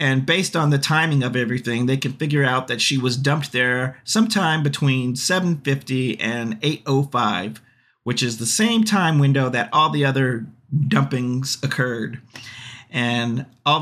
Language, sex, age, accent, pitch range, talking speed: English, male, 40-59, American, 115-135 Hz, 150 wpm